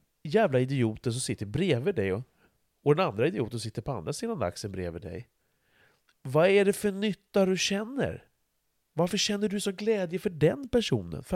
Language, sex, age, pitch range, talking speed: Swedish, male, 30-49, 105-160 Hz, 175 wpm